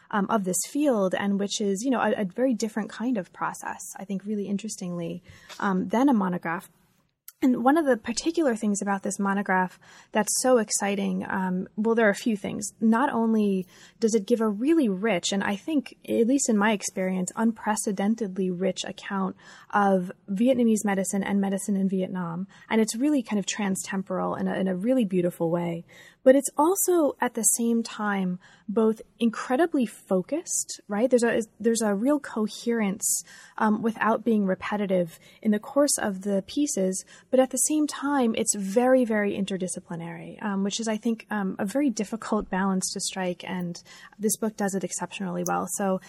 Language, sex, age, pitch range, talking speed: English, female, 20-39, 190-230 Hz, 175 wpm